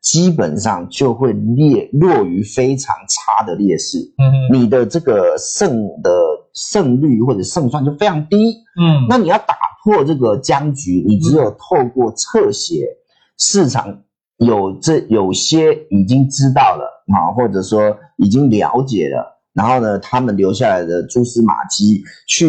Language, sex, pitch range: Chinese, male, 105-170 Hz